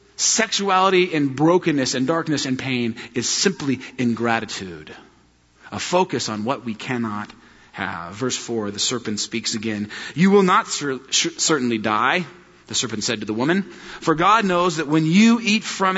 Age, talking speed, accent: 40-59, 160 wpm, American